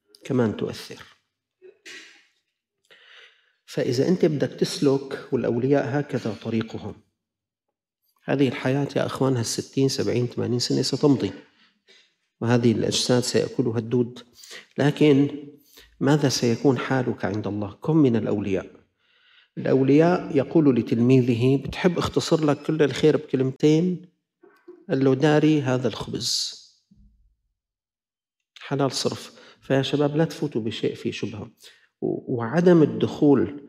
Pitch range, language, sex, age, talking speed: 120-150 Hz, Arabic, male, 50-69, 95 wpm